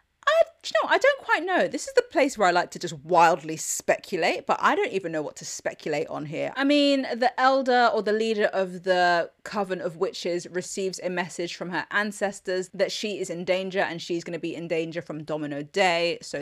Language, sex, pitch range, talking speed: English, female, 165-215 Hz, 220 wpm